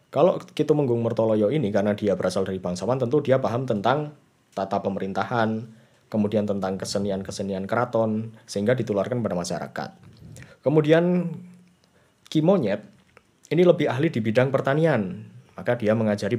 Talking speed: 125 wpm